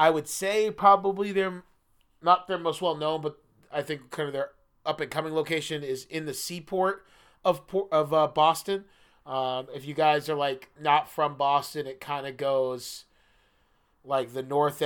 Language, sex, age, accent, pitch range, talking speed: English, male, 30-49, American, 130-165 Hz, 175 wpm